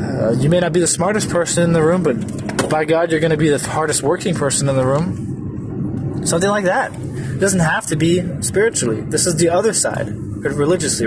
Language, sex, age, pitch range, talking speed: English, male, 20-39, 135-180 Hz, 215 wpm